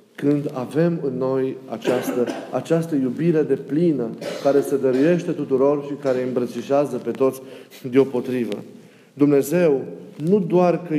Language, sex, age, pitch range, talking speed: Romanian, male, 40-59, 130-170 Hz, 125 wpm